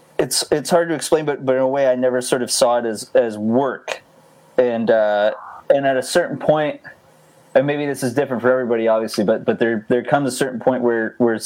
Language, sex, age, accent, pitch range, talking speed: English, male, 20-39, American, 115-130 Hz, 230 wpm